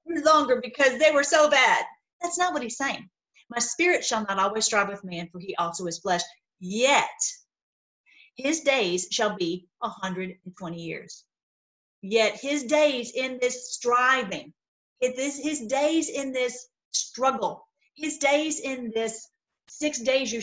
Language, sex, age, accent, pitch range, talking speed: English, female, 40-59, American, 180-255 Hz, 155 wpm